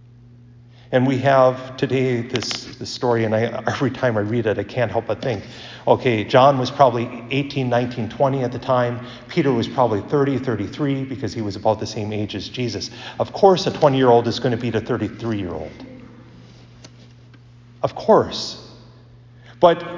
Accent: American